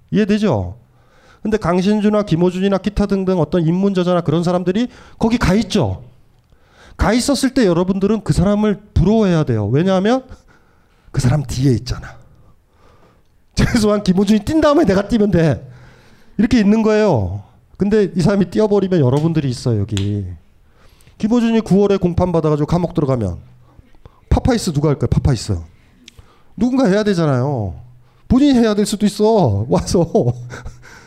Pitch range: 120-200 Hz